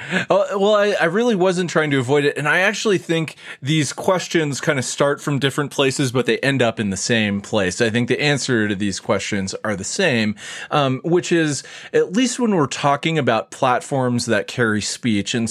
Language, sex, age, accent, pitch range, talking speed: English, male, 30-49, American, 110-140 Hz, 205 wpm